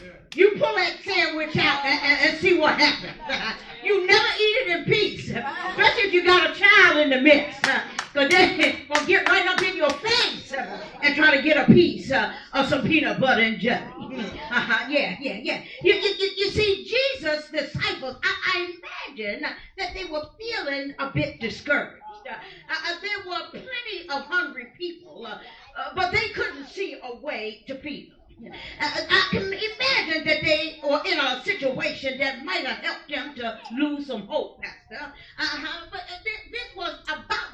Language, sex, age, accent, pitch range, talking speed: English, female, 40-59, American, 285-370 Hz, 155 wpm